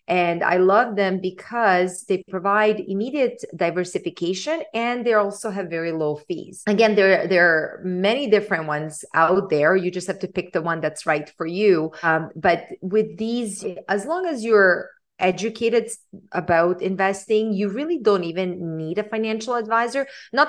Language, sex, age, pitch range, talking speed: English, female, 30-49, 170-220 Hz, 165 wpm